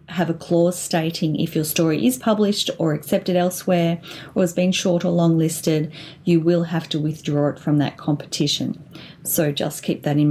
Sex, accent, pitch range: female, Australian, 155-210 Hz